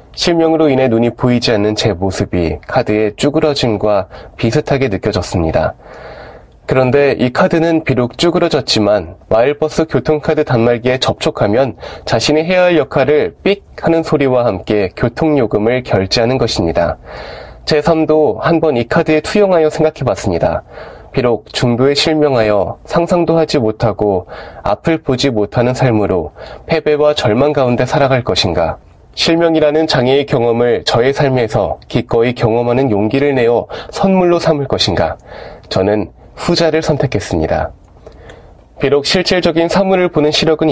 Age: 20-39